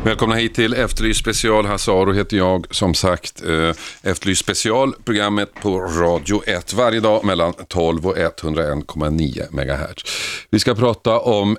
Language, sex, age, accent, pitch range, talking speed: Swedish, male, 40-59, native, 80-115 Hz, 135 wpm